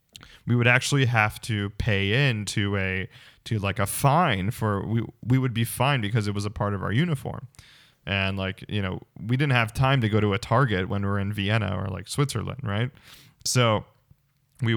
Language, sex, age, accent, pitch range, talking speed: English, male, 20-39, American, 100-125 Hz, 205 wpm